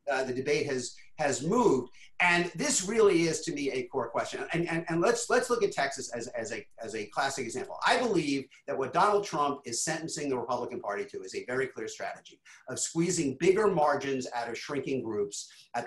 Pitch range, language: 140-200 Hz, English